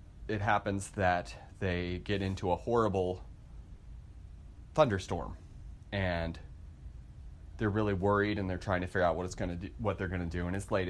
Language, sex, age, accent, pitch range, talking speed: English, male, 30-49, American, 85-105 Hz, 175 wpm